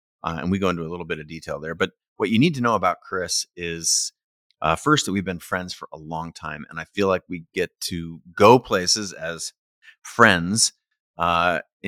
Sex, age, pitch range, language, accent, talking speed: male, 30-49, 85-105 Hz, English, American, 210 wpm